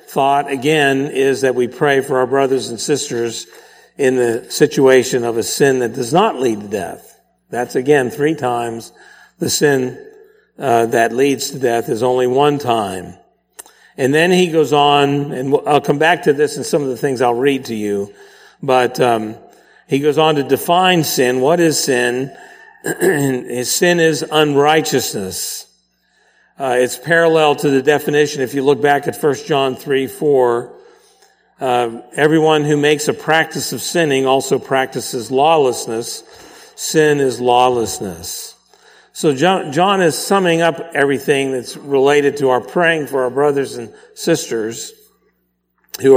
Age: 50-69